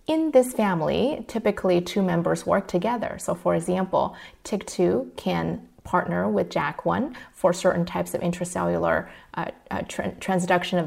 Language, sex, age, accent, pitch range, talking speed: English, female, 30-49, American, 175-220 Hz, 145 wpm